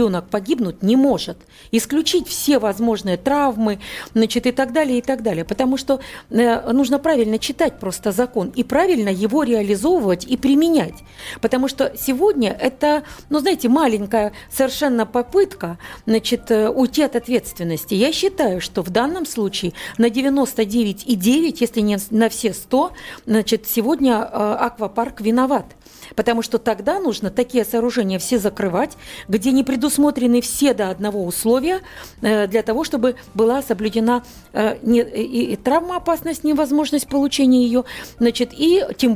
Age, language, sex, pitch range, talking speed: 50-69, Russian, female, 215-275 Hz, 135 wpm